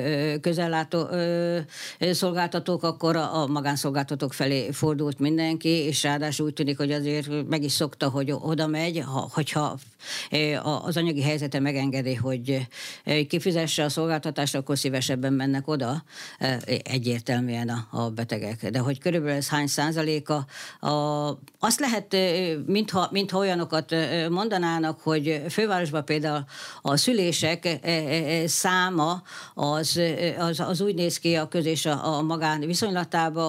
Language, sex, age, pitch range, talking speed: Hungarian, female, 60-79, 135-165 Hz, 115 wpm